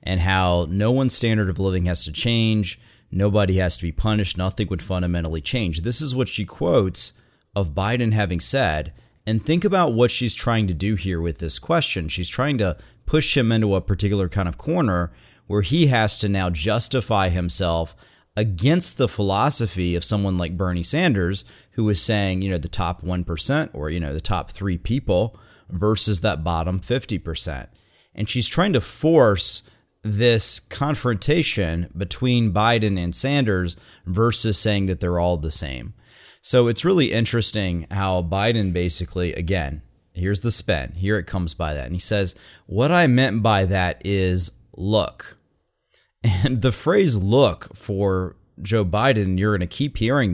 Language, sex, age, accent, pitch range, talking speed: English, male, 30-49, American, 90-115 Hz, 170 wpm